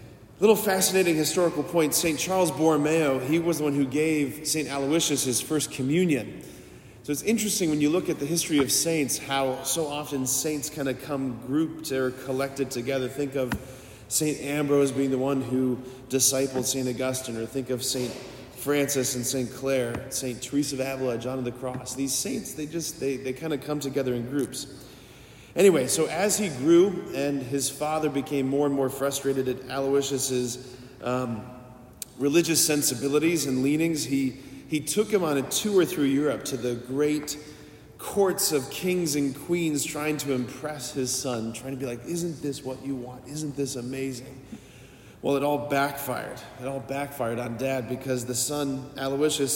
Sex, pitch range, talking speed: male, 130-150 Hz, 180 wpm